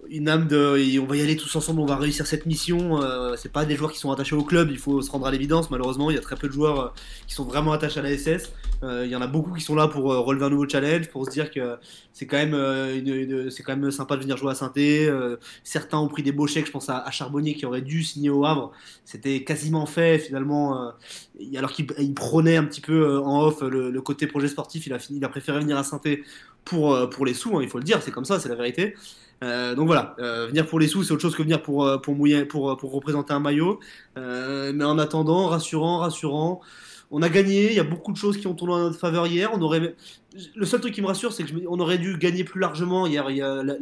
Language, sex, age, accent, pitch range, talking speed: French, male, 20-39, French, 140-165 Hz, 280 wpm